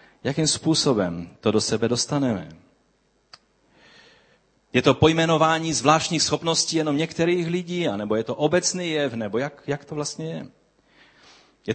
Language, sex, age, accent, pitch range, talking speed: Czech, male, 30-49, native, 130-160 Hz, 135 wpm